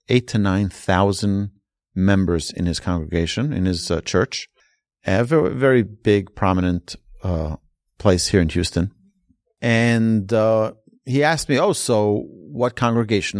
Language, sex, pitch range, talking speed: English, male, 95-125 Hz, 135 wpm